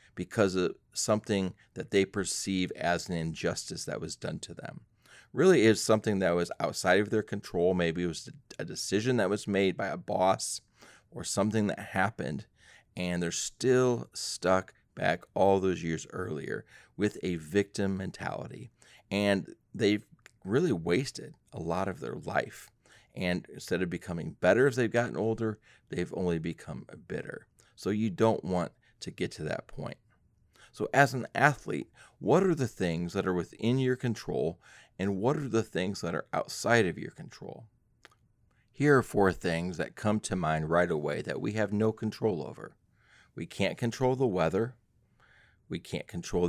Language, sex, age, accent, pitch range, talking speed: English, male, 30-49, American, 90-115 Hz, 170 wpm